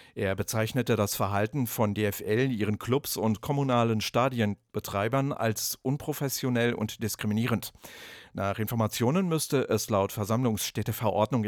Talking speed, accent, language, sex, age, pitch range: 110 wpm, German, English, male, 50-69, 105-130 Hz